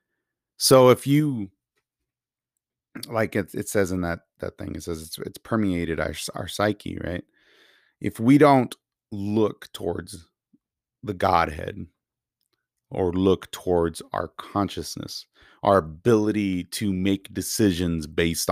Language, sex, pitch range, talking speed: English, male, 80-105 Hz, 125 wpm